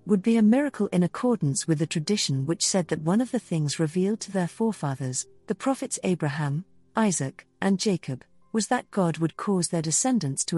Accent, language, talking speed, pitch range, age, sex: British, English, 195 wpm, 155-210 Hz, 50-69, female